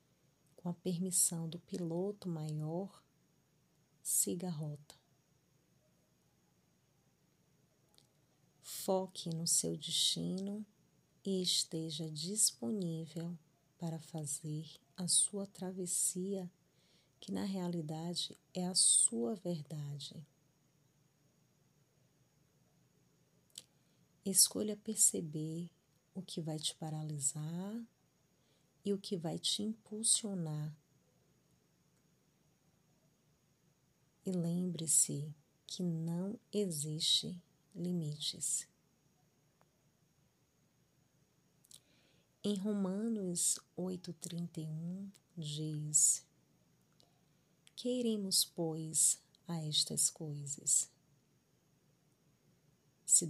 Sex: female